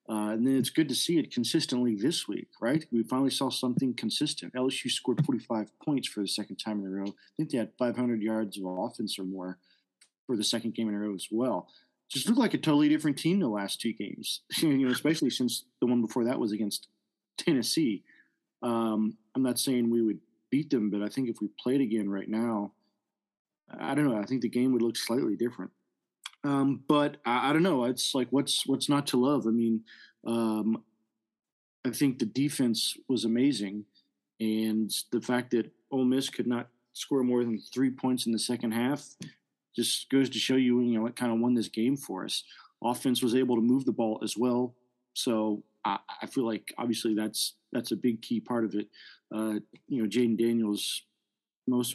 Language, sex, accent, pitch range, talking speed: English, male, American, 110-125 Hz, 210 wpm